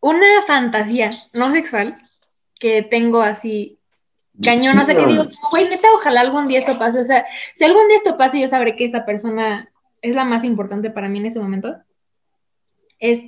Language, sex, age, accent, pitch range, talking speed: Spanish, female, 10-29, Mexican, 220-285 Hz, 190 wpm